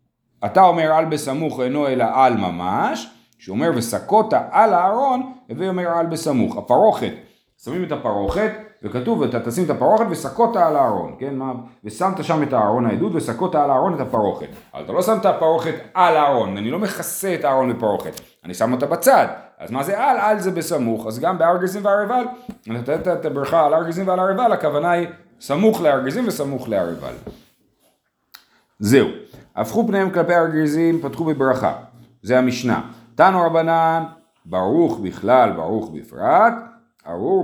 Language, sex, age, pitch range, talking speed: Hebrew, male, 40-59, 120-190 Hz, 155 wpm